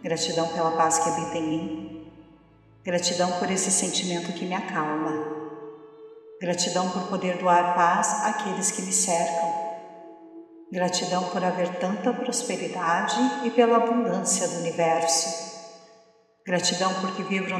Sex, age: female, 50-69